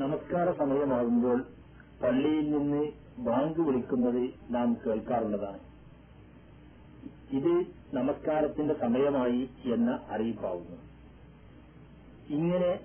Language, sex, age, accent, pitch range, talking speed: Malayalam, male, 40-59, native, 120-145 Hz, 65 wpm